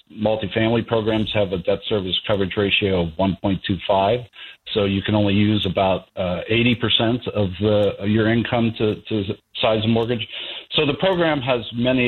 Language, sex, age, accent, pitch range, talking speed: English, male, 50-69, American, 100-115 Hz, 165 wpm